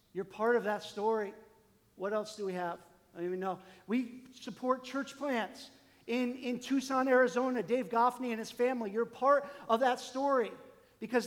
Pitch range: 180-245 Hz